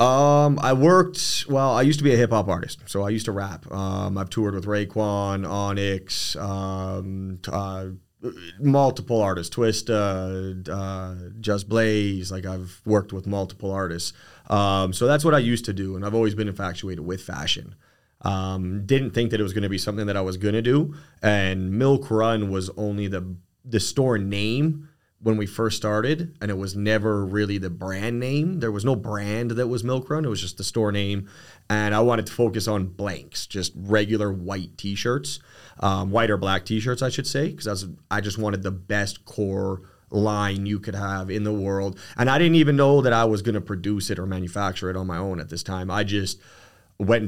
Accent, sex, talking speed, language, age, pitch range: American, male, 205 wpm, English, 30-49, 95-115 Hz